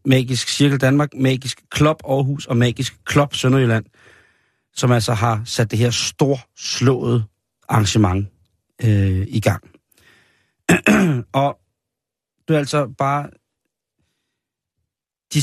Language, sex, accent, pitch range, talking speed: Danish, male, native, 110-130 Hz, 105 wpm